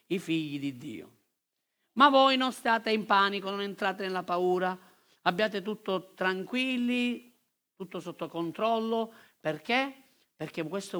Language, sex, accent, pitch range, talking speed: Italian, male, native, 185-230 Hz, 125 wpm